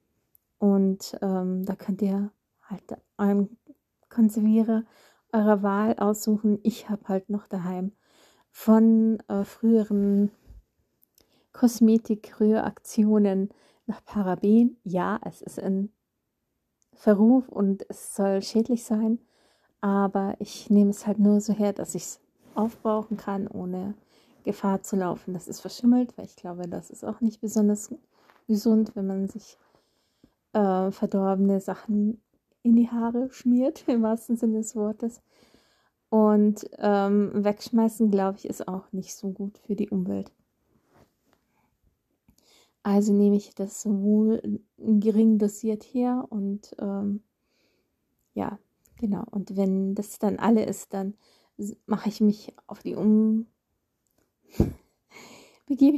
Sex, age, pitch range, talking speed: female, 30-49, 200-225 Hz, 120 wpm